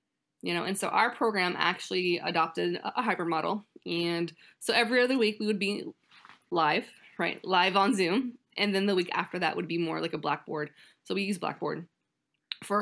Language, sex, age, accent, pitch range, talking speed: English, female, 20-39, American, 170-210 Hz, 195 wpm